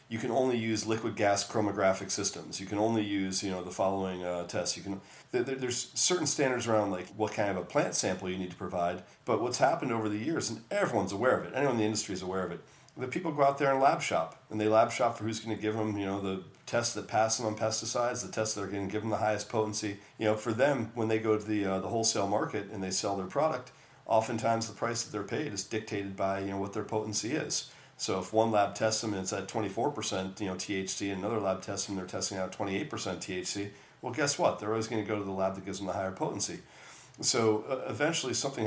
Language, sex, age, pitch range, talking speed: English, male, 40-59, 95-110 Hz, 260 wpm